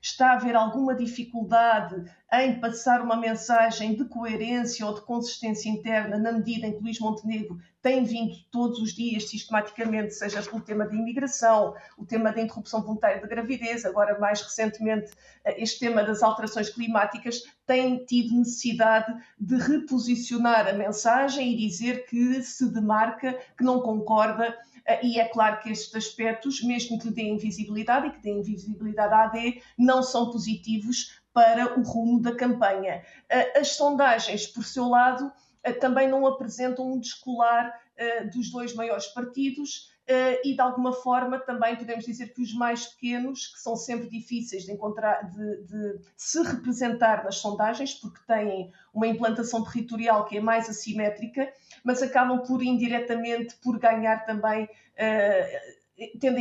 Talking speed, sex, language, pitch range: 150 wpm, female, Portuguese, 220-245 Hz